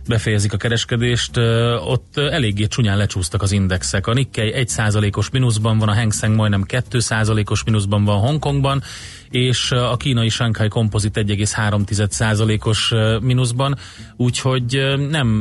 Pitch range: 105-125 Hz